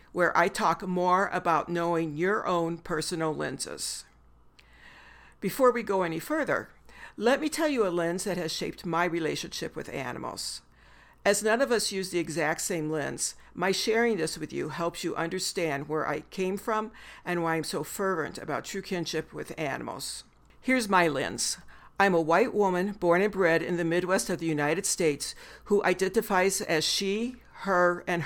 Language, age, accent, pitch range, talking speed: English, 60-79, American, 160-195 Hz, 175 wpm